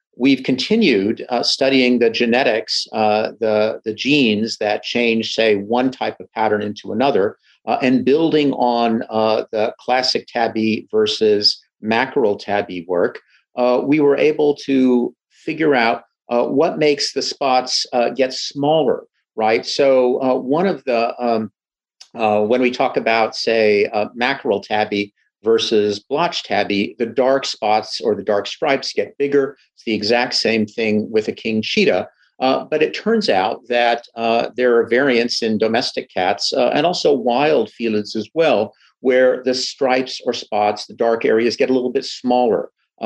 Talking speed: 160 wpm